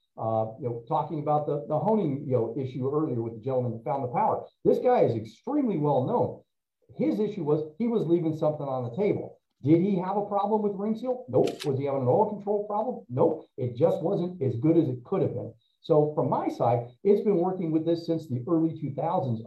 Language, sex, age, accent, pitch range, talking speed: English, male, 50-69, American, 130-175 Hz, 220 wpm